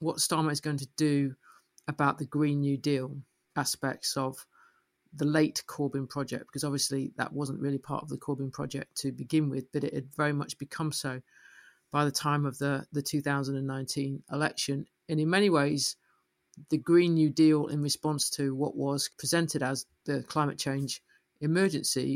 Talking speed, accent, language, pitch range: 175 wpm, British, English, 140-150 Hz